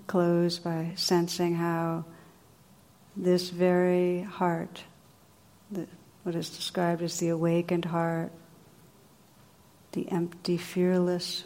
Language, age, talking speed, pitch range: English, 60-79, 90 wpm, 165-180 Hz